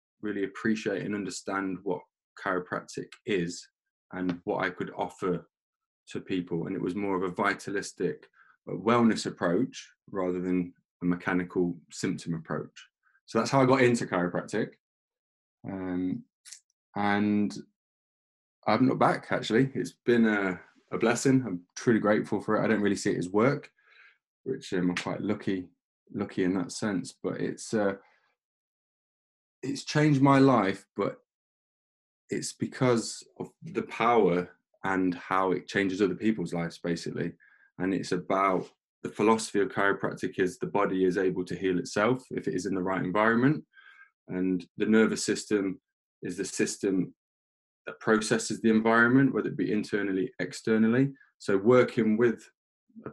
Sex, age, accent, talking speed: male, 20-39, British, 145 wpm